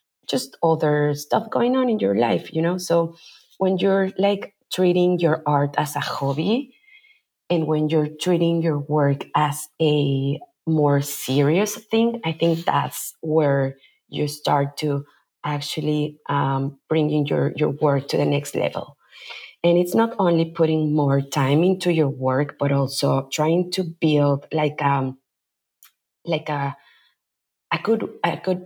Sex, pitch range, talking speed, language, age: female, 140-170 Hz, 150 wpm, English, 30-49